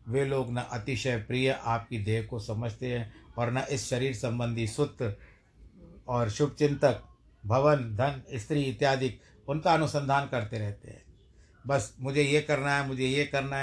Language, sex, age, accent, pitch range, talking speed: Hindi, male, 60-79, native, 115-145 Hz, 155 wpm